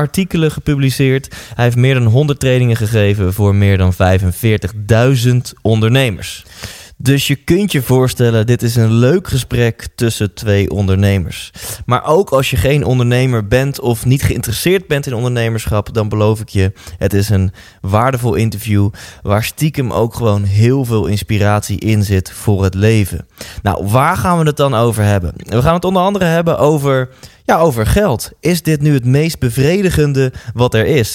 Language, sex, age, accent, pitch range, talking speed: Dutch, male, 20-39, Dutch, 105-140 Hz, 170 wpm